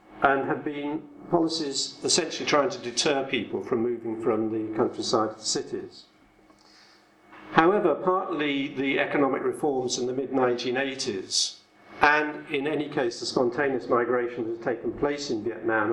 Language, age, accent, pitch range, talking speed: English, 50-69, British, 120-185 Hz, 140 wpm